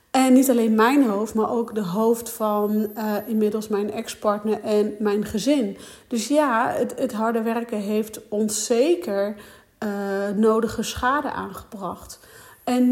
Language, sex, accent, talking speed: Dutch, female, Dutch, 145 wpm